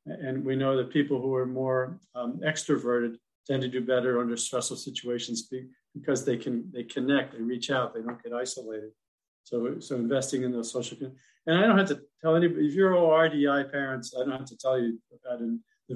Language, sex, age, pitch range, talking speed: English, male, 50-69, 120-140 Hz, 220 wpm